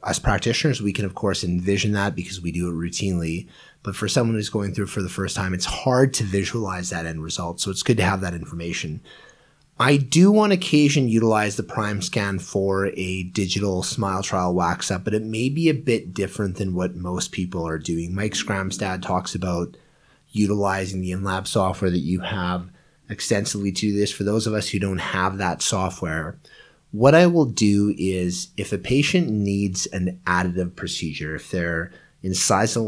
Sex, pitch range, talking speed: male, 90-105 Hz, 190 wpm